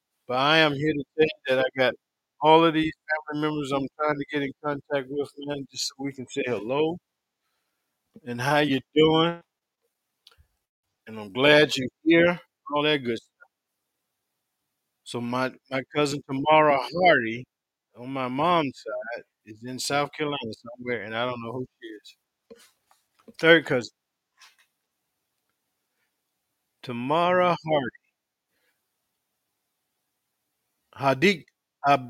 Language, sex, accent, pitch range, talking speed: English, male, American, 125-155 Hz, 125 wpm